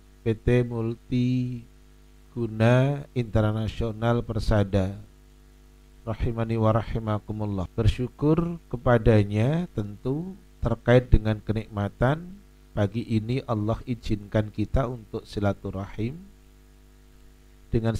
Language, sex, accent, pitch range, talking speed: Indonesian, male, native, 105-125 Hz, 70 wpm